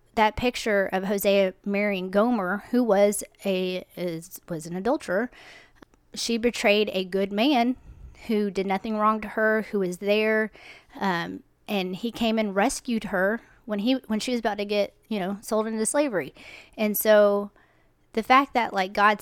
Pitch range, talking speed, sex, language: 185-220 Hz, 170 wpm, female, English